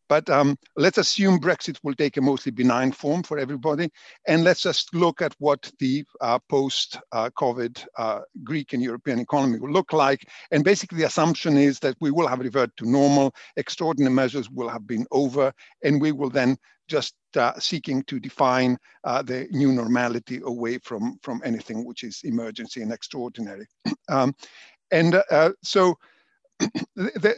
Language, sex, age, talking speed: English, male, 50-69, 165 wpm